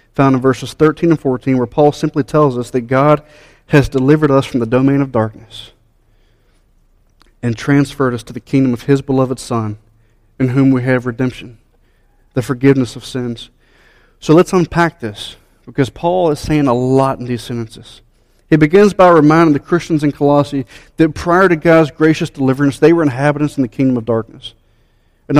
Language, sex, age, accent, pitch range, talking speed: English, male, 40-59, American, 125-165 Hz, 180 wpm